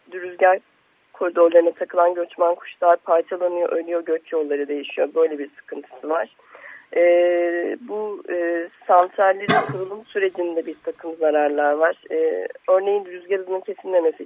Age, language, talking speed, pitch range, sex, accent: 40-59, Turkish, 120 wpm, 170-220 Hz, female, native